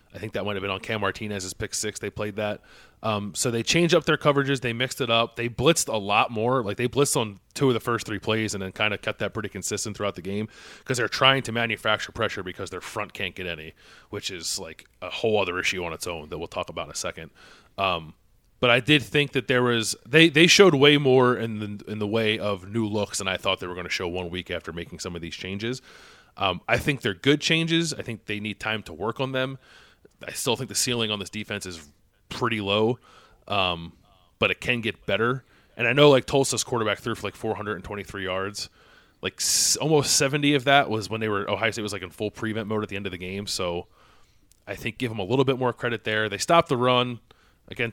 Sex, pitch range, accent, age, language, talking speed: male, 100-125 Hz, American, 30-49, English, 250 wpm